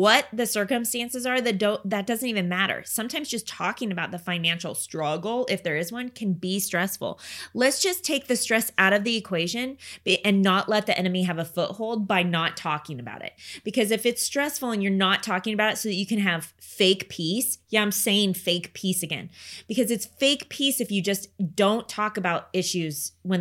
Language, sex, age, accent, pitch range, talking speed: English, female, 20-39, American, 180-240 Hz, 210 wpm